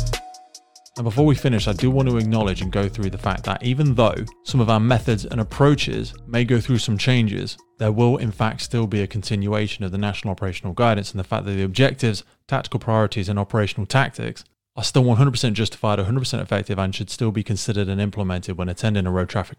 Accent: British